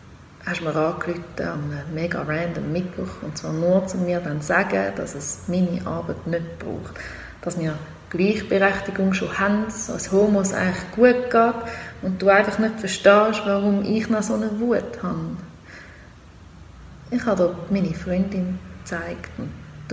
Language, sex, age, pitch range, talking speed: German, female, 30-49, 175-225 Hz, 155 wpm